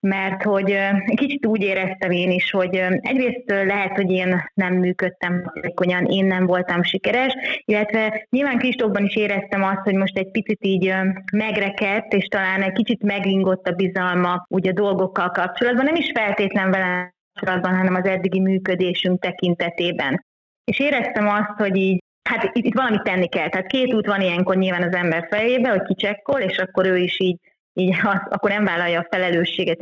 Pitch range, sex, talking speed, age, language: 180-210 Hz, female, 170 wpm, 20-39, Hungarian